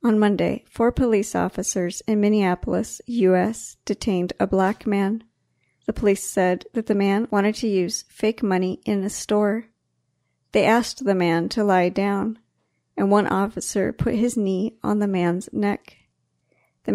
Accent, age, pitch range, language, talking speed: American, 50-69, 190-220 Hz, Portuguese, 155 wpm